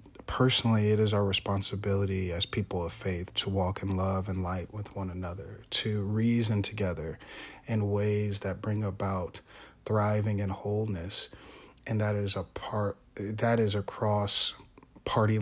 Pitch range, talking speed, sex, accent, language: 95-115 Hz, 150 wpm, male, American, English